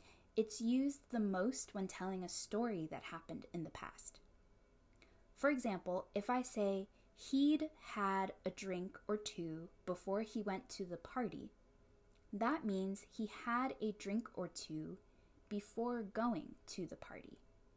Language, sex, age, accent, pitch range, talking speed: English, female, 10-29, American, 175-235 Hz, 145 wpm